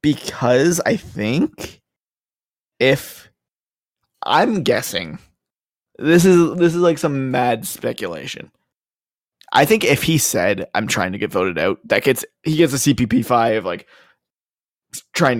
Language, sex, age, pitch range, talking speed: English, male, 20-39, 120-165 Hz, 135 wpm